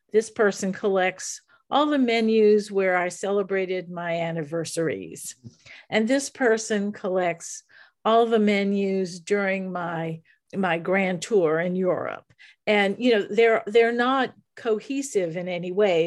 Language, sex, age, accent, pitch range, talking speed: English, female, 50-69, American, 180-220 Hz, 130 wpm